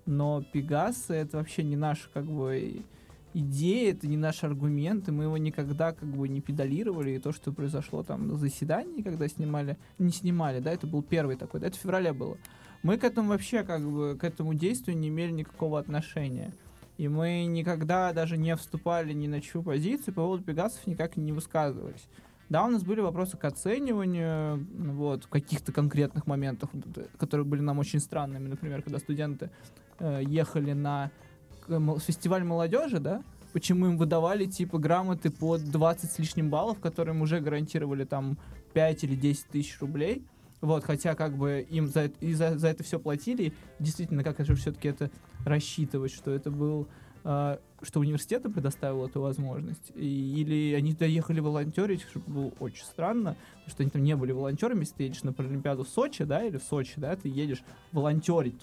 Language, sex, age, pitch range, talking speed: Russian, male, 20-39, 145-165 Hz, 175 wpm